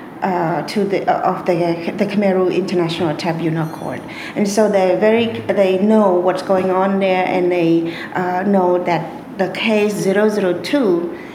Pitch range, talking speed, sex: 175-210 Hz, 160 wpm, female